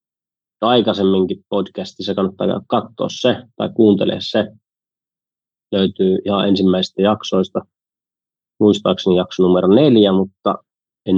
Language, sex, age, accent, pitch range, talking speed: Finnish, male, 30-49, native, 95-110 Hz, 95 wpm